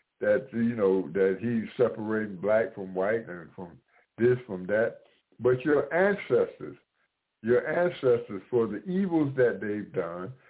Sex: male